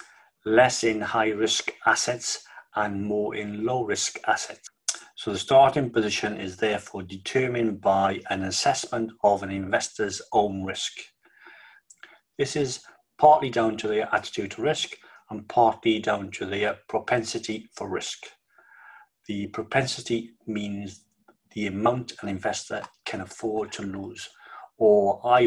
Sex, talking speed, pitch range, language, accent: male, 125 wpm, 100-120 Hz, English, British